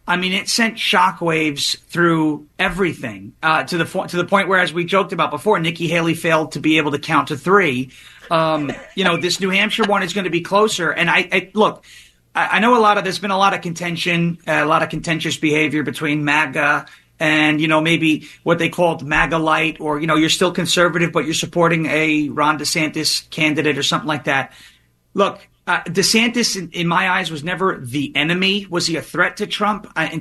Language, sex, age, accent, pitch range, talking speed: English, male, 30-49, American, 155-190 Hz, 220 wpm